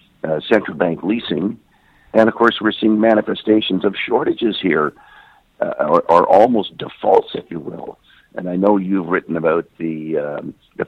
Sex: male